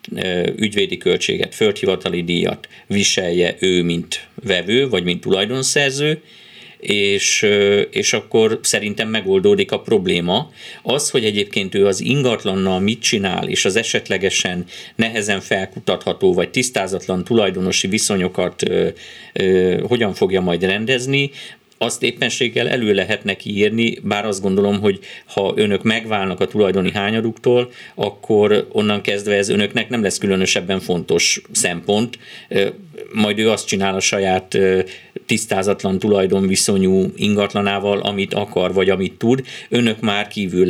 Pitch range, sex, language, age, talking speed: 95-115 Hz, male, Hungarian, 50-69, 120 wpm